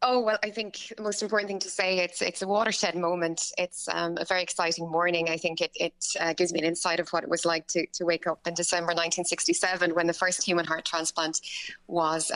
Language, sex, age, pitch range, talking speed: English, female, 20-39, 160-180 Hz, 240 wpm